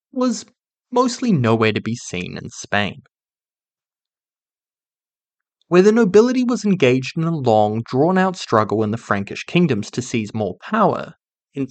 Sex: male